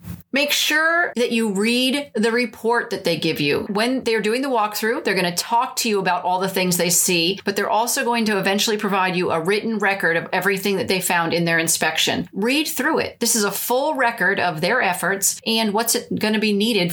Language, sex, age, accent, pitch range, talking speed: English, female, 30-49, American, 185-235 Hz, 225 wpm